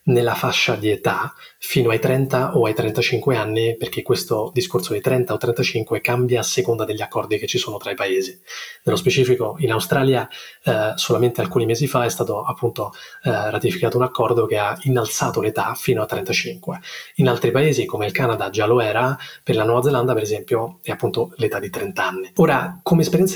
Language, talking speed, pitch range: Italian, 195 wpm, 120-150 Hz